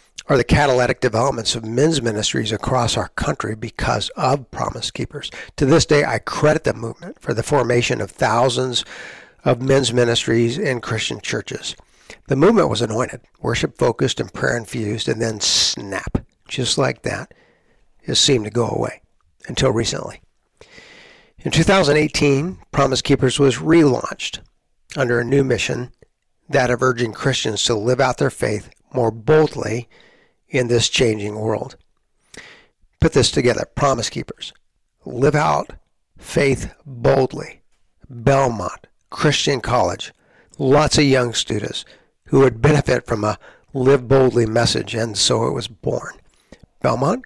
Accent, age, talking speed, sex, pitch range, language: American, 60-79, 135 wpm, male, 115-140 Hz, English